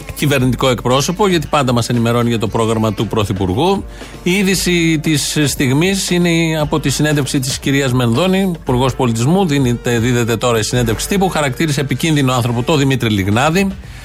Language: Greek